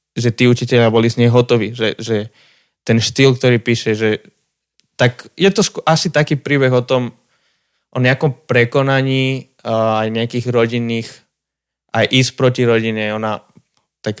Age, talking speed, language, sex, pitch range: 20-39, 150 wpm, Slovak, male, 110-130 Hz